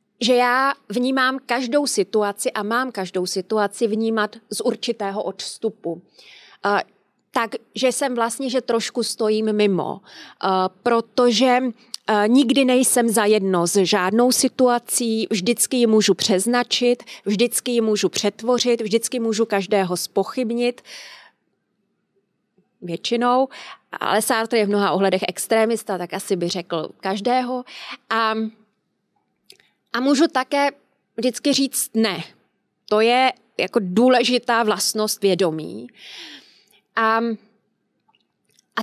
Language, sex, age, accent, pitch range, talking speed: Czech, female, 30-49, native, 210-255 Hz, 105 wpm